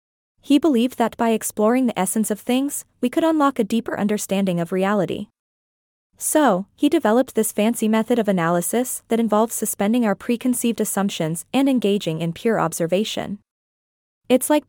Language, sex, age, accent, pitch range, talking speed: English, female, 20-39, American, 200-250 Hz, 155 wpm